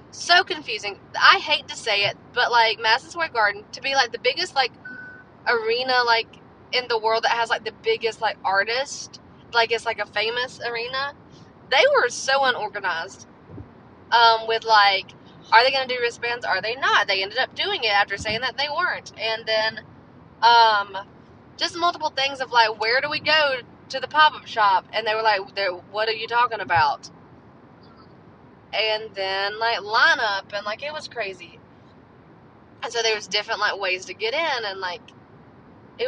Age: 20-39